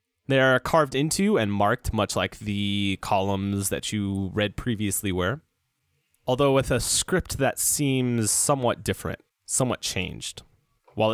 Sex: male